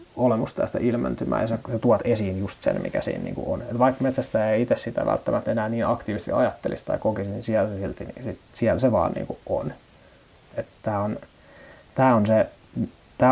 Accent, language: native, Finnish